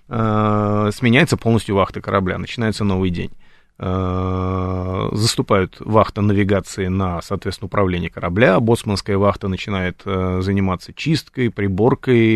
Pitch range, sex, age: 95-120 Hz, male, 30-49